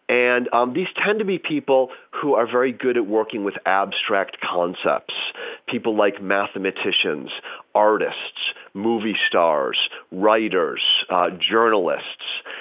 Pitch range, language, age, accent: 105-150 Hz, English, 40-59, American